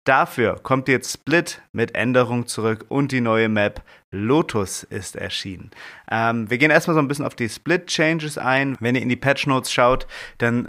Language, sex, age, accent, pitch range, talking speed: German, male, 30-49, German, 115-140 Hz, 190 wpm